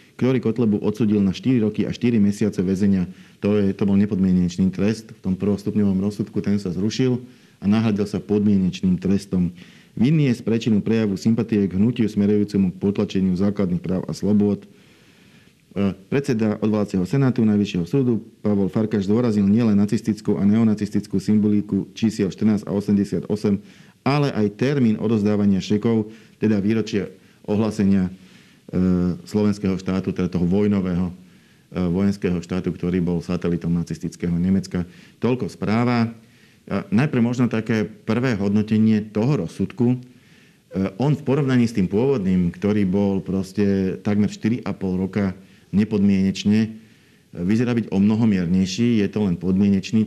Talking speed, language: 125 wpm, Slovak